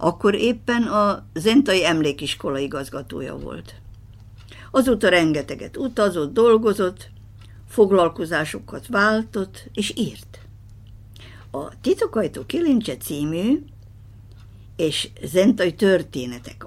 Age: 60-79